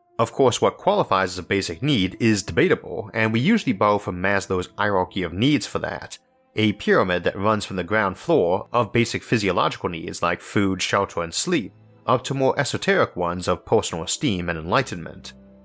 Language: English